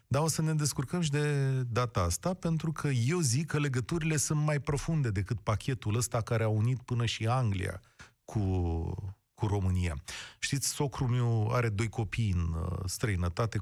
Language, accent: Romanian, native